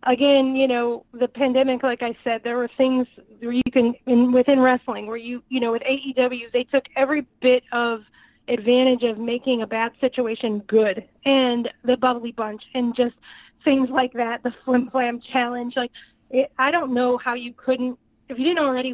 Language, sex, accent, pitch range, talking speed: English, female, American, 235-260 Hz, 190 wpm